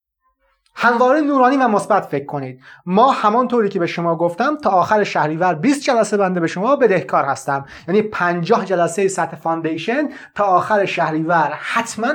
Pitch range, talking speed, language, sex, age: 165-230 Hz, 155 wpm, Persian, male, 30-49